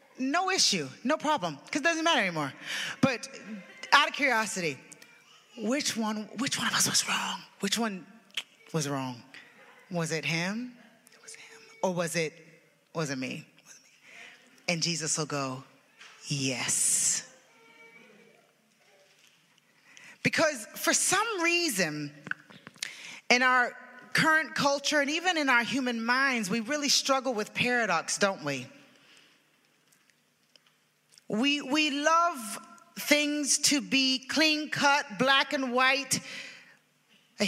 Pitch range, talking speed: 190-285 Hz, 120 wpm